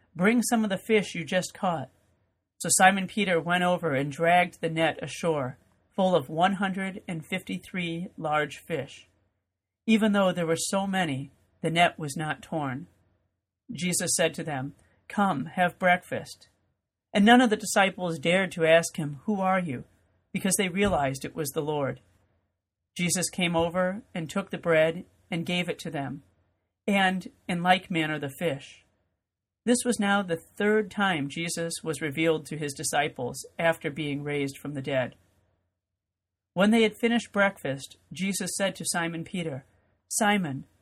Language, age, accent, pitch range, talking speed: English, 40-59, American, 130-185 Hz, 155 wpm